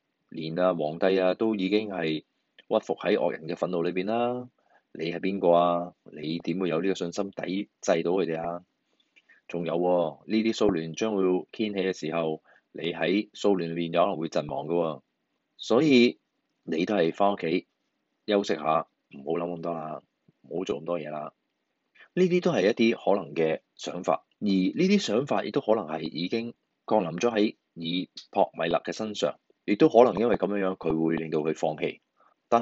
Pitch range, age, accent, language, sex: 85-115 Hz, 20-39, native, Chinese, male